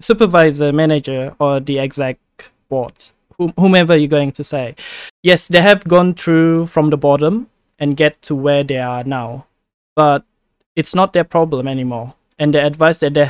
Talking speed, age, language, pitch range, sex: 165 wpm, 20-39, English, 140-170 Hz, male